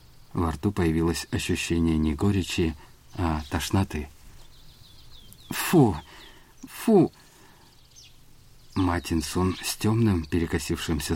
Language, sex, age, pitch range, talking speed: Russian, male, 50-69, 75-100 Hz, 75 wpm